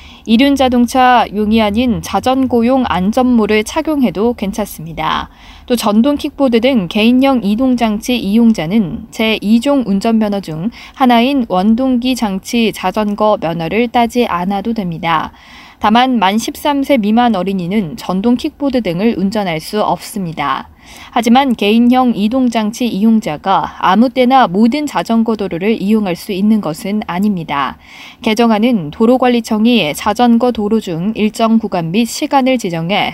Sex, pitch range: female, 205-250 Hz